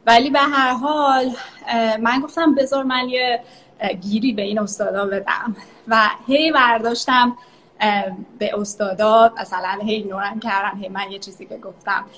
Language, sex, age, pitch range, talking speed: Persian, female, 20-39, 205-250 Hz, 145 wpm